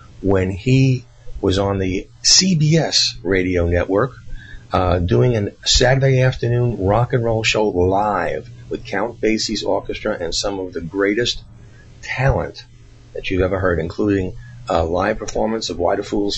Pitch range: 95-120 Hz